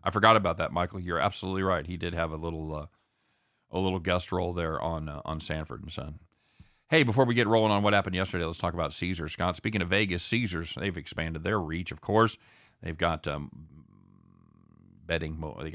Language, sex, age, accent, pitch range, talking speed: English, male, 40-59, American, 80-105 Hz, 205 wpm